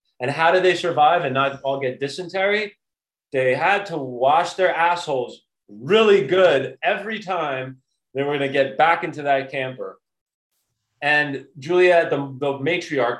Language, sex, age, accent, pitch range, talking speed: English, male, 30-49, American, 125-170 Hz, 155 wpm